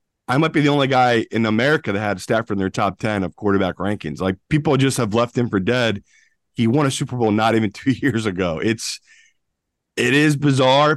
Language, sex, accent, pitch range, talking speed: English, male, American, 100-130 Hz, 220 wpm